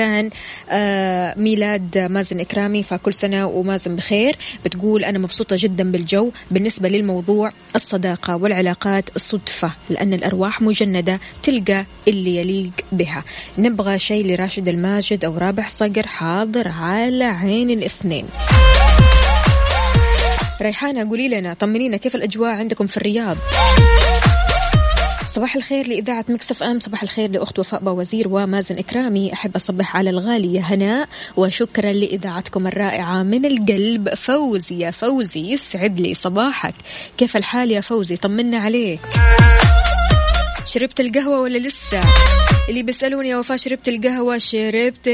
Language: Arabic